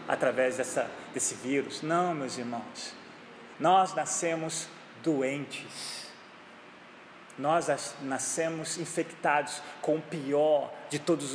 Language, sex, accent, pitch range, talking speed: Portuguese, male, Brazilian, 140-200 Hz, 90 wpm